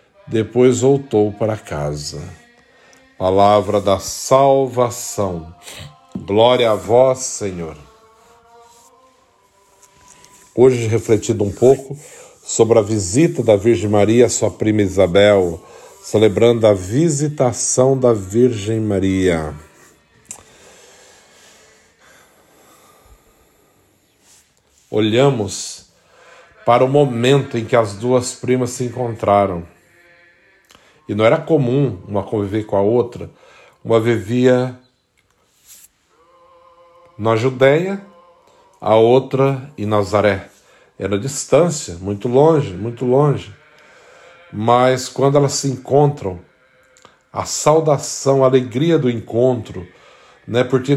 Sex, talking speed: male, 90 wpm